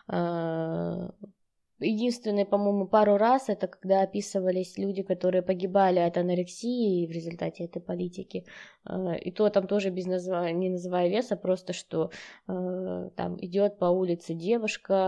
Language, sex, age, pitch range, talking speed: Russian, female, 20-39, 175-220 Hz, 125 wpm